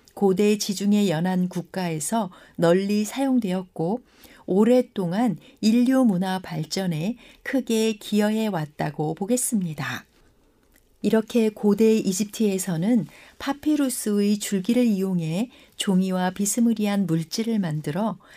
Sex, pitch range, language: female, 180-240 Hz, Korean